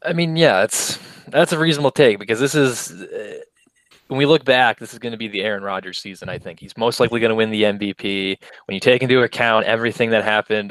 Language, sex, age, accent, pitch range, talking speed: English, male, 20-39, American, 105-130 Hz, 235 wpm